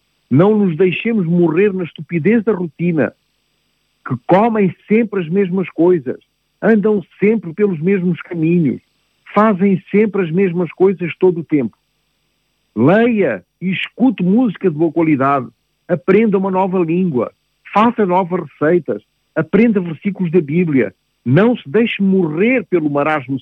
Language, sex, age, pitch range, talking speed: Portuguese, male, 50-69, 140-190 Hz, 130 wpm